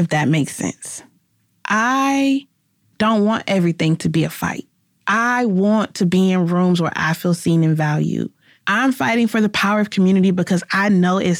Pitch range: 170-205 Hz